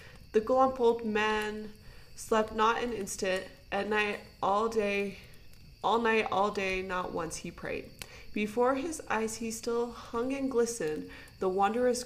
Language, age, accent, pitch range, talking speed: English, 20-39, American, 195-245 Hz, 150 wpm